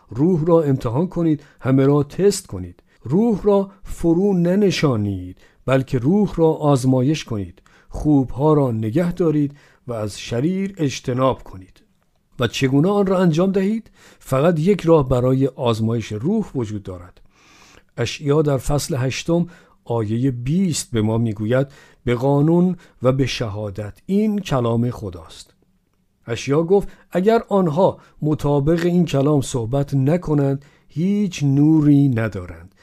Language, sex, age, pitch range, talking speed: Persian, male, 50-69, 120-165 Hz, 125 wpm